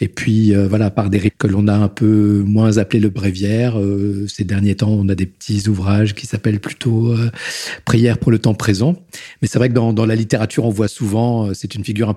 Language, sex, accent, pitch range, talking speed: French, male, French, 105-130 Hz, 245 wpm